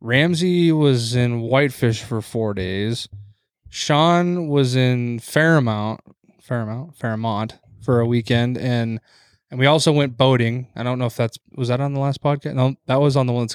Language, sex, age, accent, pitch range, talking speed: English, male, 20-39, American, 110-135 Hz, 175 wpm